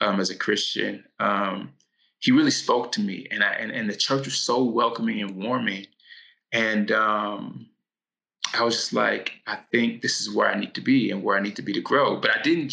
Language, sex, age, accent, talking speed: English, male, 20-39, American, 220 wpm